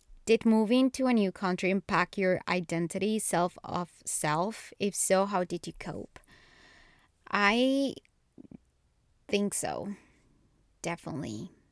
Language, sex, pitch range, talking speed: English, female, 175-220 Hz, 115 wpm